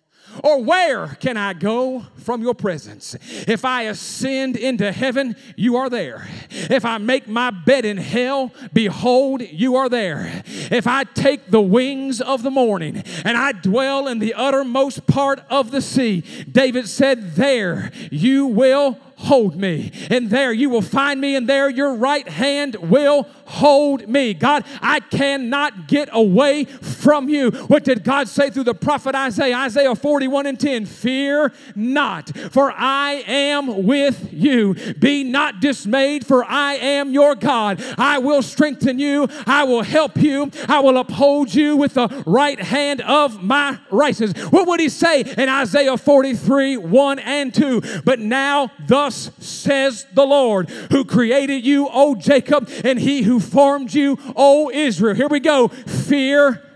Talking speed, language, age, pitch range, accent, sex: 160 wpm, English, 40-59, 240-280 Hz, American, male